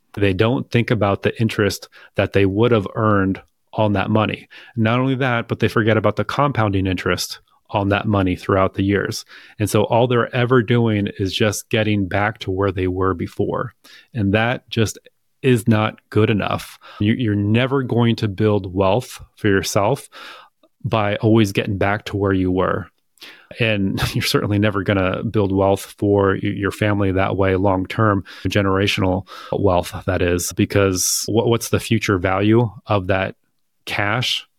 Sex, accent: male, American